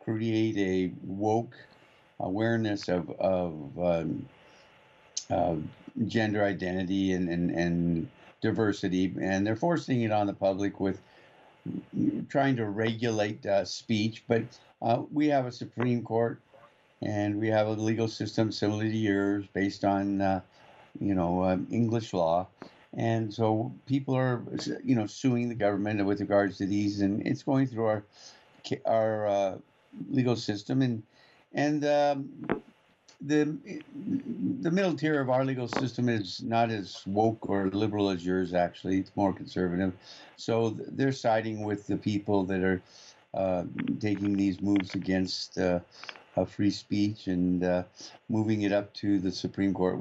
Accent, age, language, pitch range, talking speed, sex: American, 50-69, English, 95-115 Hz, 145 wpm, male